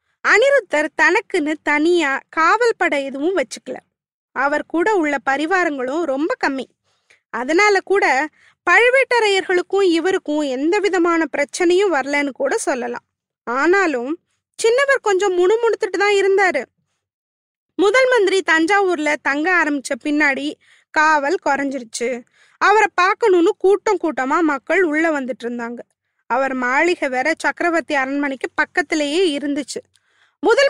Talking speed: 100 wpm